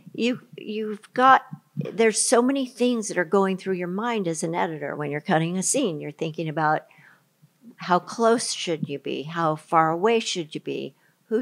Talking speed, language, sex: 190 wpm, English, female